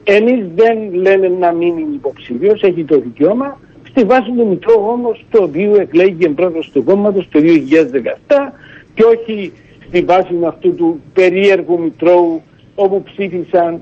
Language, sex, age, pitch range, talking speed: Greek, male, 60-79, 160-225 Hz, 140 wpm